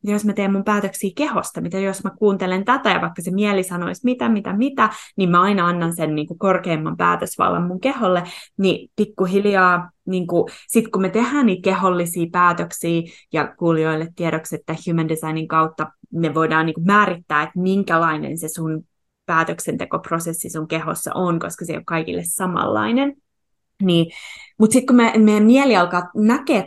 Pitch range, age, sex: 170-225 Hz, 20-39, female